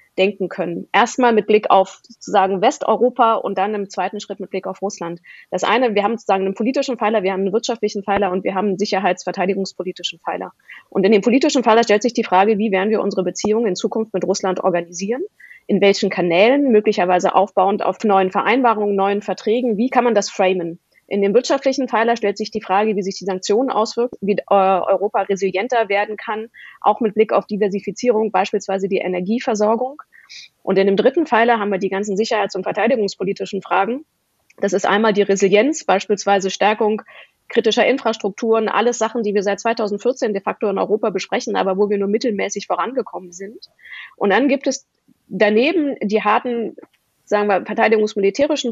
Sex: female